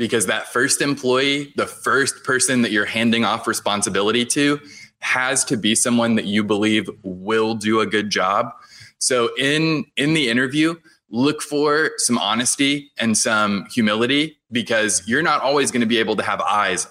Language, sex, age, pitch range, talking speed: English, male, 20-39, 105-130 Hz, 170 wpm